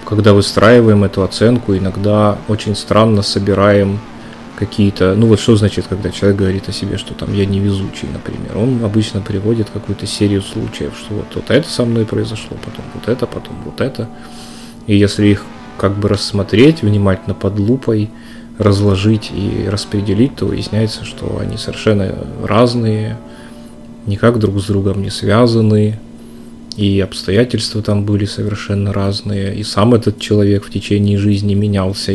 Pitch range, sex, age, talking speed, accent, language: 100-115 Hz, male, 20-39, 150 wpm, native, Russian